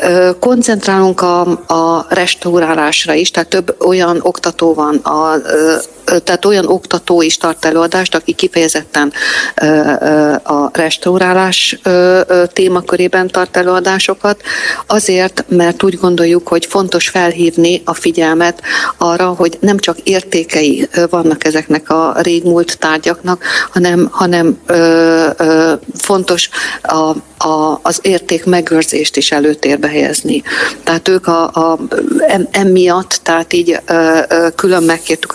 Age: 50-69